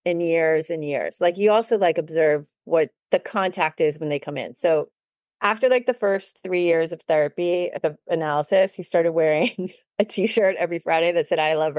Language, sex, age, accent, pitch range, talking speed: English, female, 30-49, American, 160-225 Hz, 200 wpm